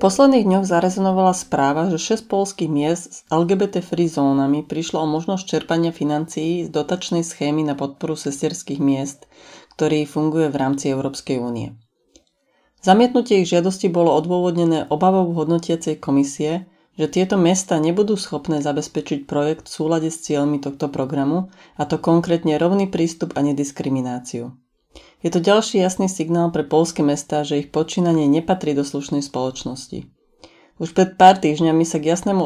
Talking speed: 150 wpm